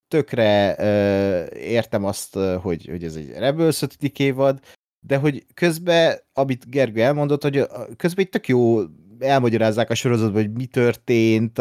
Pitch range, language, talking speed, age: 110-145 Hz, Hungarian, 135 wpm, 30-49